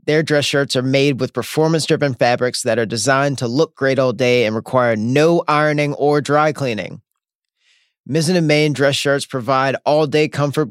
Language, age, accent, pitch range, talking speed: English, 30-49, American, 125-155 Hz, 175 wpm